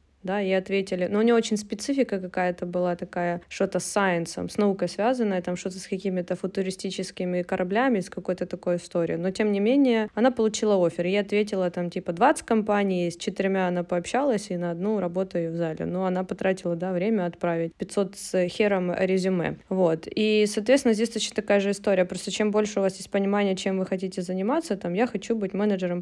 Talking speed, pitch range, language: 195 wpm, 180-210 Hz, Russian